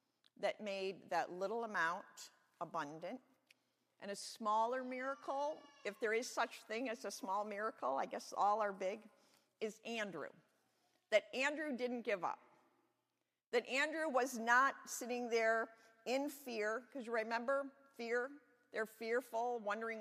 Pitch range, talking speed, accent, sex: 210-265 Hz, 135 wpm, American, female